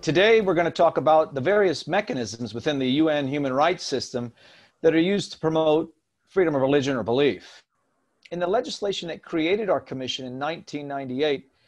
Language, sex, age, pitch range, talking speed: English, male, 50-69, 130-170 Hz, 175 wpm